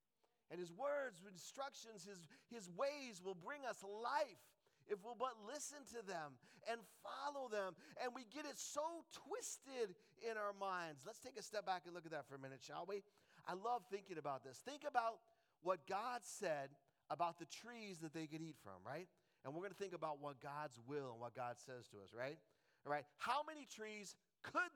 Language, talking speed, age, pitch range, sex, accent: English, 205 wpm, 40-59, 145-225 Hz, male, American